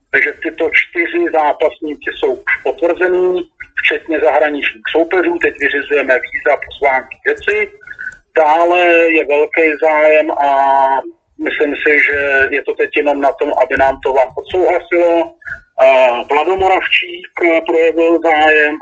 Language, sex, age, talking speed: Slovak, male, 40-59, 120 wpm